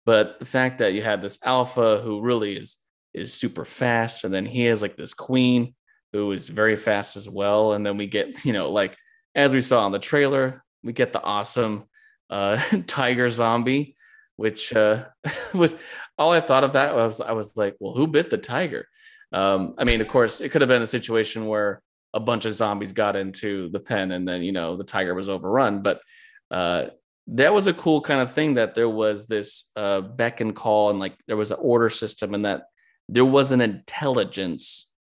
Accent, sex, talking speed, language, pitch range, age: American, male, 210 wpm, English, 105-135 Hz, 20-39